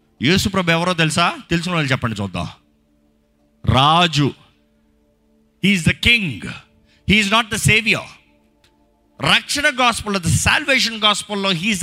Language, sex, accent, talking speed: Telugu, male, native, 95 wpm